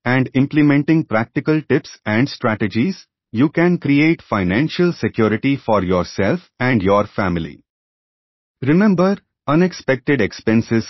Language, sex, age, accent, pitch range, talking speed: English, male, 30-49, Indian, 100-145 Hz, 105 wpm